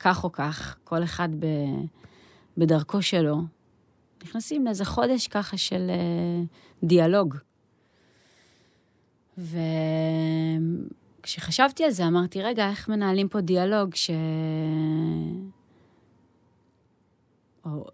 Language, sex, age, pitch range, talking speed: Hebrew, female, 30-49, 160-205 Hz, 80 wpm